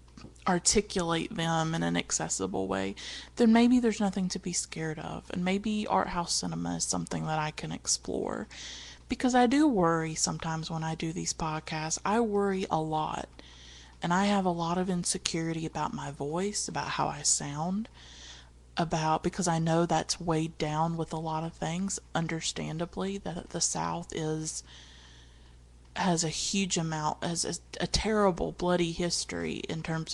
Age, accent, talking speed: 30-49, American, 165 wpm